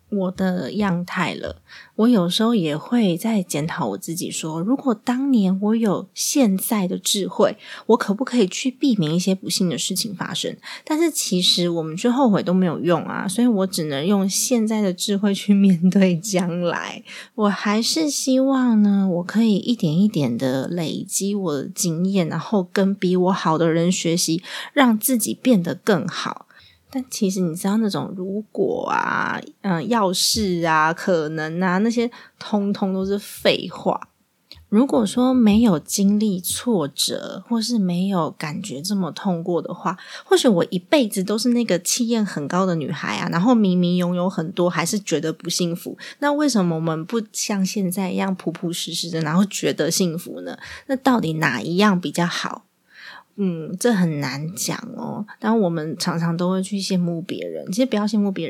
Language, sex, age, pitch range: Chinese, female, 20-39, 175-225 Hz